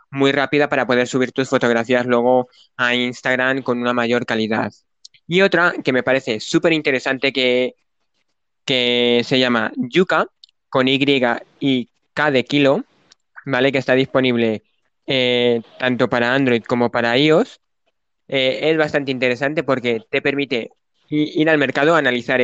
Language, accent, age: Spanish, Spanish, 20-39